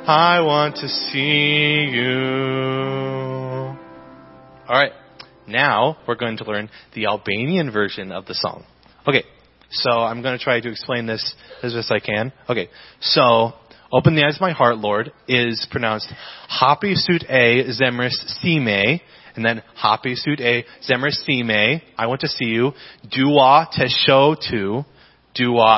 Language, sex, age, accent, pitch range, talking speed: English, male, 30-49, American, 110-140 Hz, 140 wpm